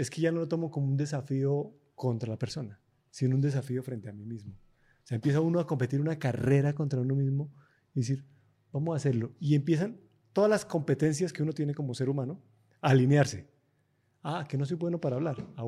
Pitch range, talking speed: 125-155 Hz, 215 wpm